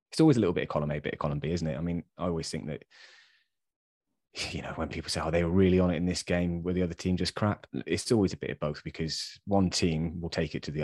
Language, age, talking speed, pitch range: English, 20-39, 300 wpm, 80-90 Hz